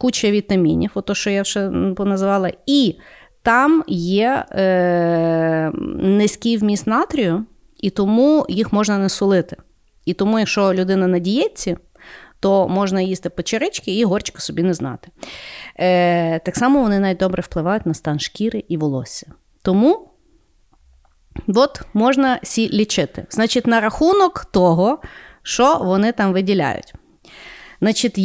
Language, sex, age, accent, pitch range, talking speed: Ukrainian, female, 30-49, native, 185-245 Hz, 125 wpm